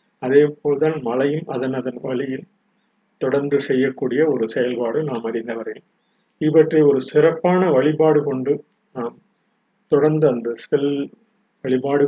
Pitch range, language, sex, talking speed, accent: 130-160 Hz, Tamil, male, 110 wpm, native